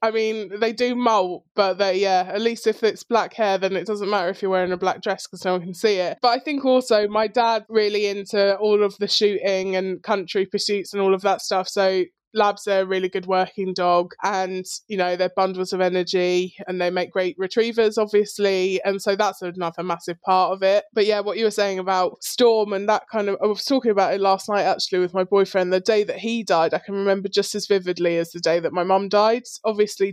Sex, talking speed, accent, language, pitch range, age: male, 240 wpm, British, English, 180-210 Hz, 20-39